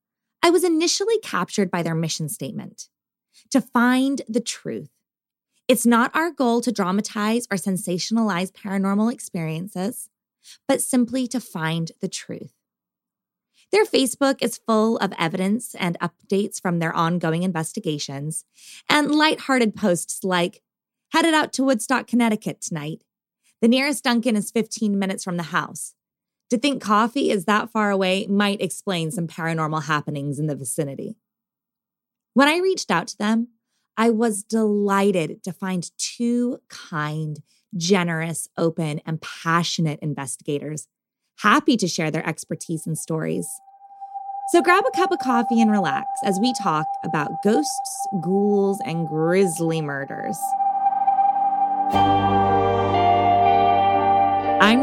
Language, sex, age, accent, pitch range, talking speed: English, female, 20-39, American, 165-245 Hz, 130 wpm